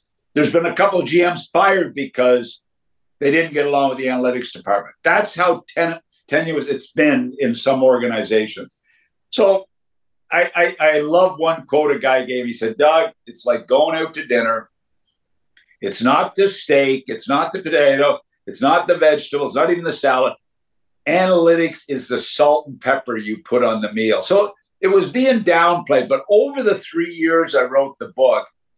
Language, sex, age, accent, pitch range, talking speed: English, male, 60-79, American, 130-175 Hz, 175 wpm